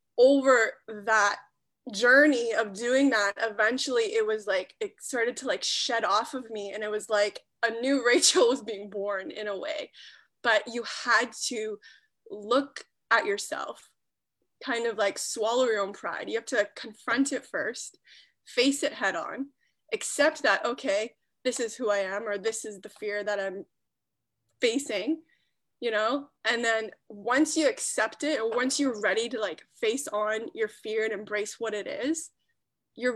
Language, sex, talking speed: English, female, 170 wpm